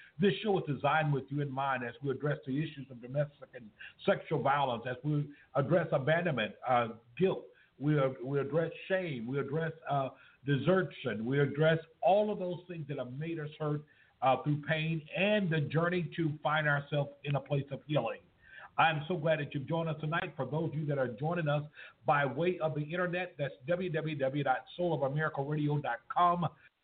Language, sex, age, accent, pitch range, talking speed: English, male, 50-69, American, 145-165 Hz, 180 wpm